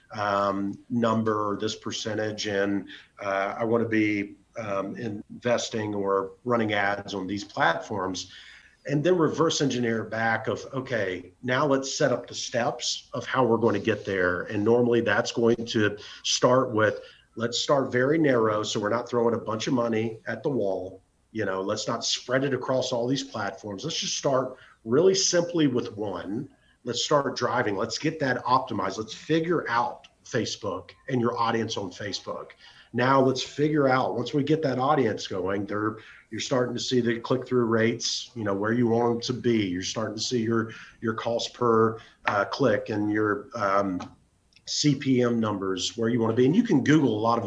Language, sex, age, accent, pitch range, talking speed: English, male, 40-59, American, 105-125 Hz, 180 wpm